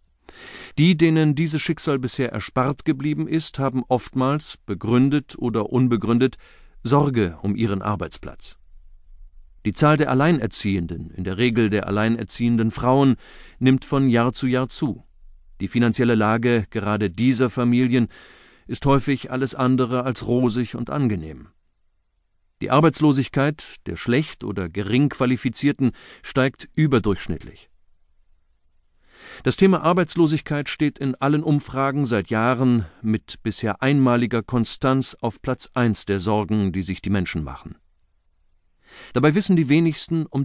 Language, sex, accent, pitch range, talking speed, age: German, male, German, 95-135 Hz, 125 wpm, 40-59